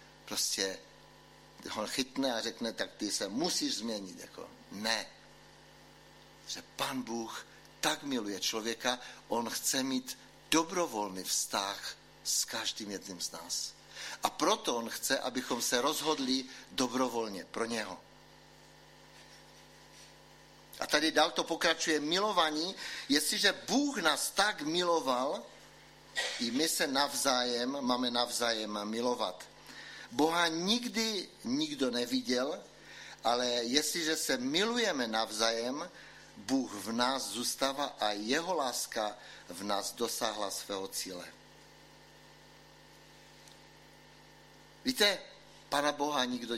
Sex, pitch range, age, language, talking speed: male, 110-160 Hz, 60-79, Czech, 105 wpm